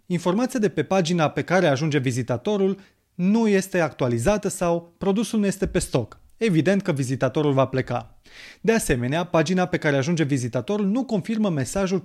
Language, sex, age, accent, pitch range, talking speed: Romanian, male, 30-49, native, 135-185 Hz, 160 wpm